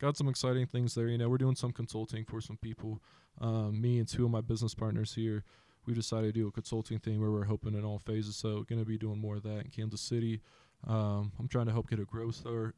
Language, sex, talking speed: English, male, 260 wpm